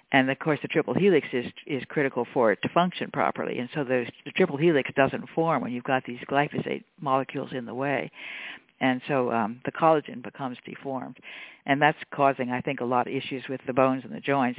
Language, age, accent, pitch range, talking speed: English, 60-79, American, 125-145 Hz, 215 wpm